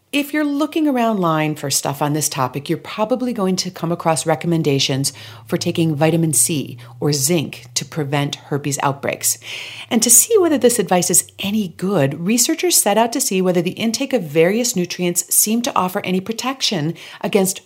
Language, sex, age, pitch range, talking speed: English, female, 40-59, 150-215 Hz, 180 wpm